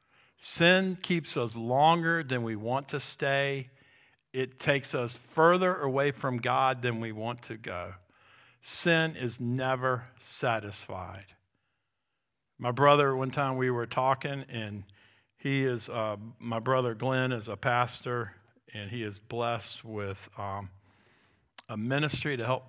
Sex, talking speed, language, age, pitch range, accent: male, 140 wpm, English, 50-69, 110-135 Hz, American